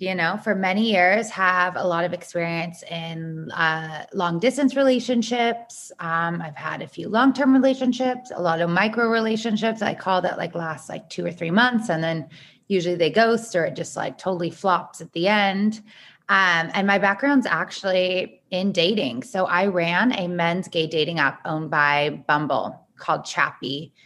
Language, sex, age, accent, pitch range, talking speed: English, female, 20-39, American, 165-195 Hz, 180 wpm